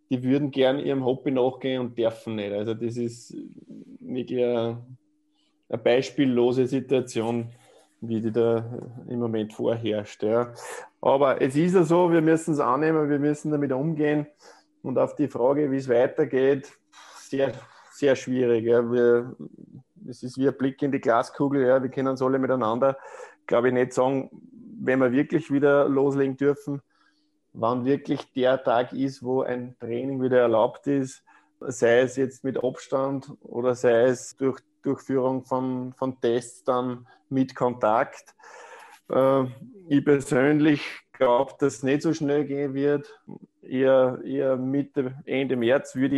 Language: German